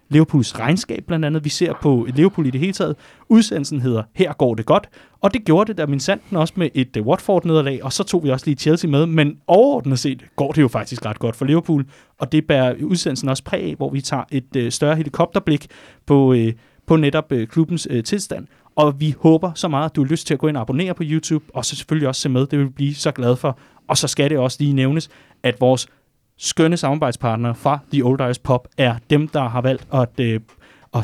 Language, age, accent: Danish, 30-49, native